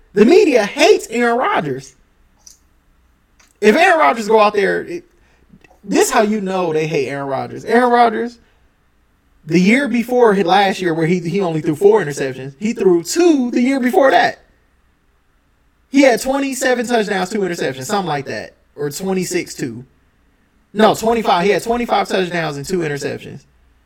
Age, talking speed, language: 20-39, 155 wpm, English